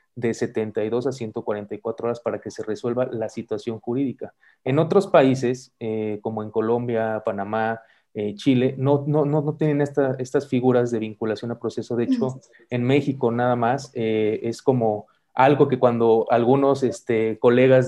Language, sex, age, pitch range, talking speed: English, male, 30-49, 115-135 Hz, 165 wpm